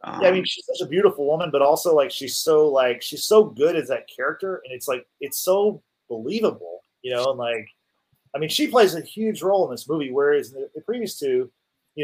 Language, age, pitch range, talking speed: English, 30-49, 120-185 Hz, 230 wpm